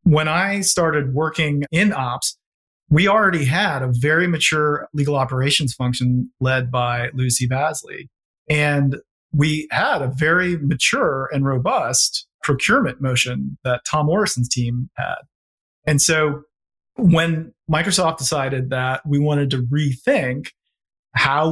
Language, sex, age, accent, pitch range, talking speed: English, male, 40-59, American, 135-165 Hz, 125 wpm